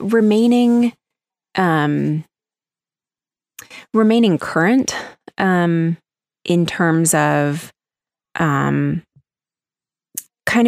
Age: 20-39